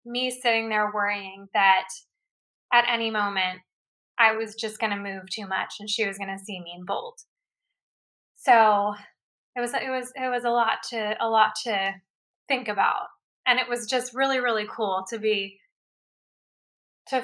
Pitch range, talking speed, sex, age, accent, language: 205-245 Hz, 175 wpm, female, 10-29, American, English